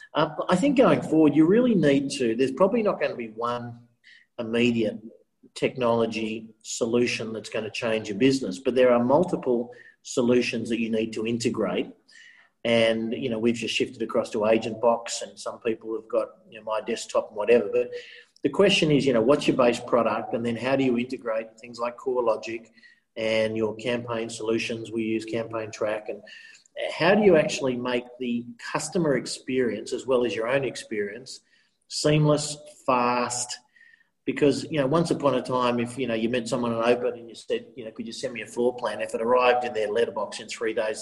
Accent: Australian